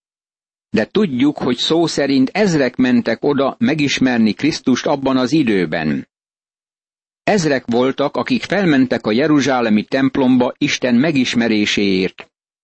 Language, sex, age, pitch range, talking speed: Hungarian, male, 50-69, 120-155 Hz, 105 wpm